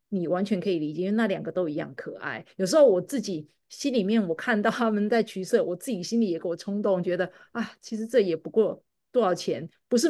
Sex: female